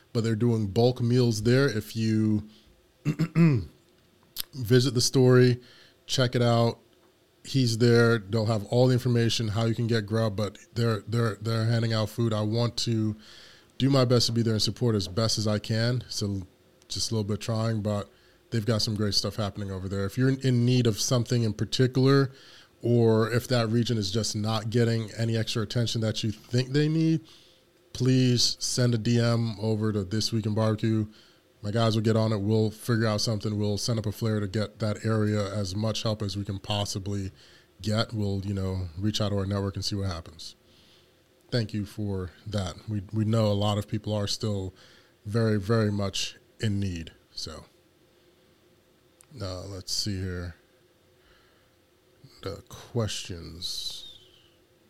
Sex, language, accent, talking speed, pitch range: male, English, American, 175 wpm, 105-120 Hz